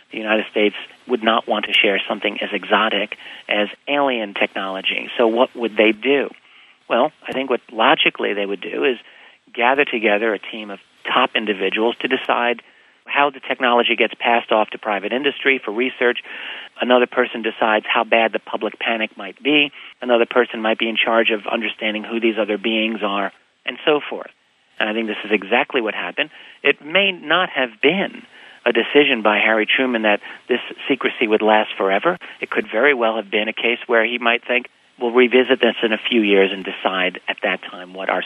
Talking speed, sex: 195 wpm, male